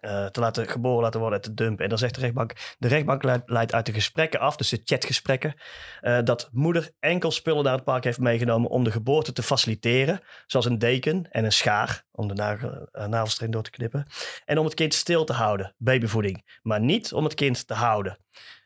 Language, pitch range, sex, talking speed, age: Dutch, 110-135 Hz, male, 220 wpm, 30-49